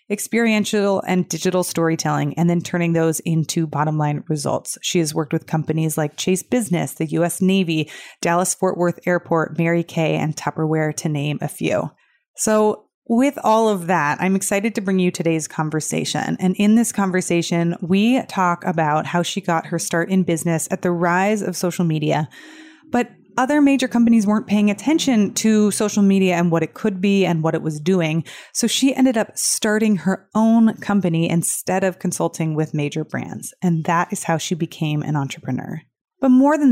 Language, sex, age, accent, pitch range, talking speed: English, female, 30-49, American, 170-215 Hz, 180 wpm